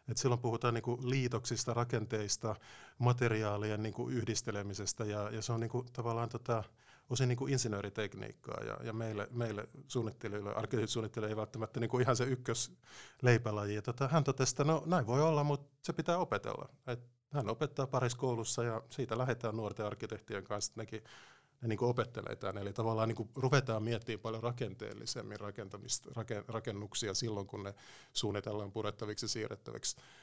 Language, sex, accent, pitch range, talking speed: Finnish, male, native, 110-130 Hz, 150 wpm